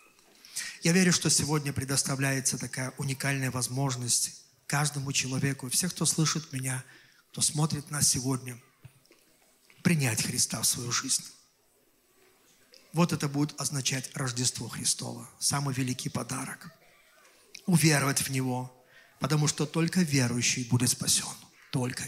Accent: native